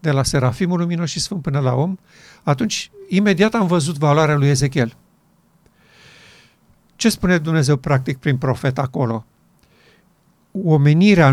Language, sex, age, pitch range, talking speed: Romanian, male, 50-69, 140-185 Hz, 125 wpm